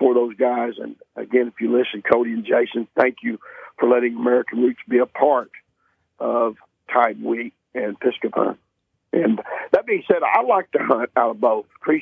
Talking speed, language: 185 wpm, English